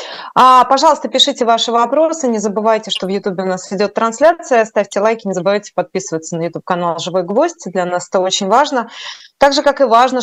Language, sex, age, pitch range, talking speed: Russian, female, 20-39, 180-220 Hz, 190 wpm